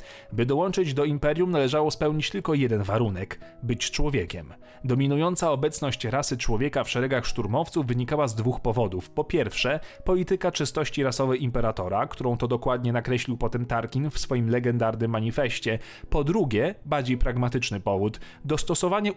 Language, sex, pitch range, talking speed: Polish, male, 115-150 Hz, 140 wpm